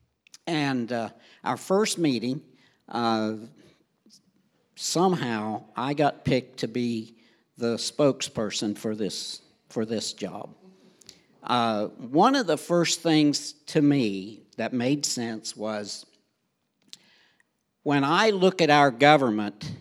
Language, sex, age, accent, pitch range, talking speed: English, male, 60-79, American, 120-170 Hz, 110 wpm